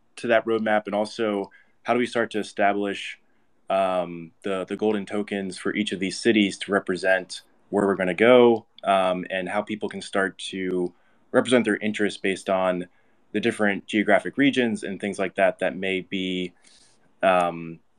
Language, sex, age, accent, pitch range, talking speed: English, male, 20-39, American, 95-115 Hz, 175 wpm